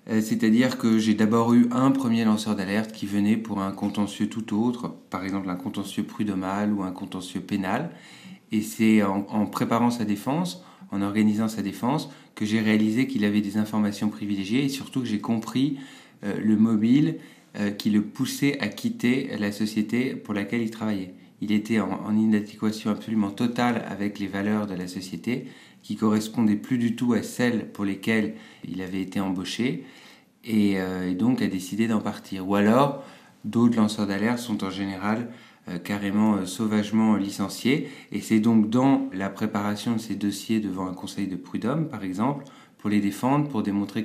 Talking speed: 175 wpm